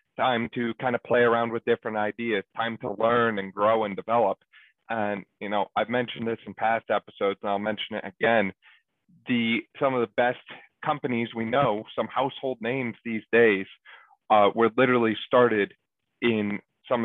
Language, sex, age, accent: English, male, 30-49, American